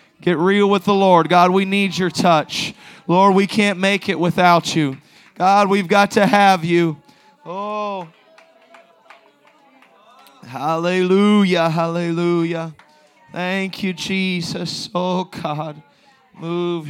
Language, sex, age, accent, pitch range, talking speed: English, male, 30-49, American, 125-175 Hz, 115 wpm